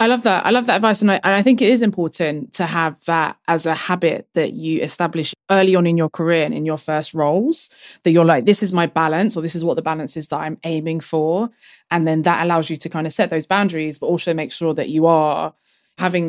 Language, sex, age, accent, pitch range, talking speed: English, female, 20-39, British, 160-180 Hz, 260 wpm